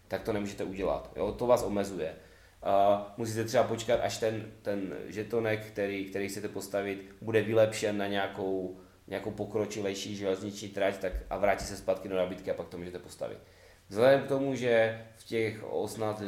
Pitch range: 100-115 Hz